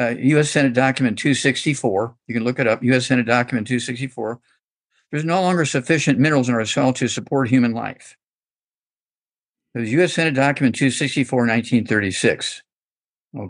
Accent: American